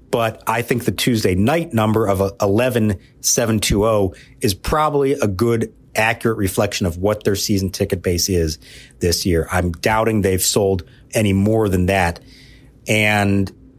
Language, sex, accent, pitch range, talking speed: English, male, American, 95-130 Hz, 145 wpm